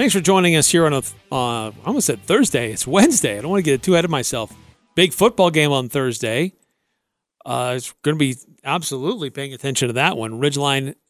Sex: male